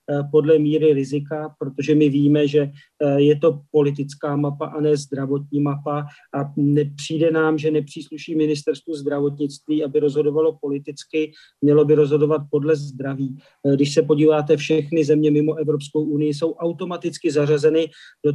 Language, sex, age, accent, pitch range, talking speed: Czech, male, 40-59, native, 145-160 Hz, 135 wpm